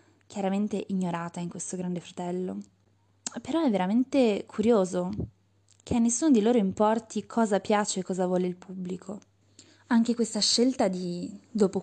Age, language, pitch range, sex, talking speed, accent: 20-39, Italian, 175-220 Hz, female, 140 wpm, native